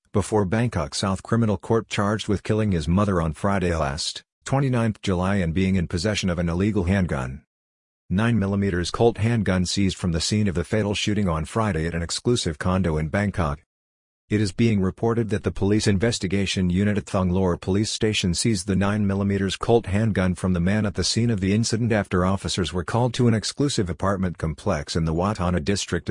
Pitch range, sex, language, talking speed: 85-105 Hz, male, English, 190 wpm